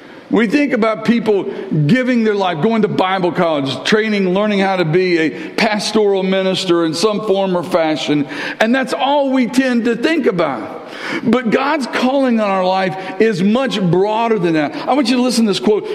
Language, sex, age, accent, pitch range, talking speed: English, male, 50-69, American, 185-250 Hz, 190 wpm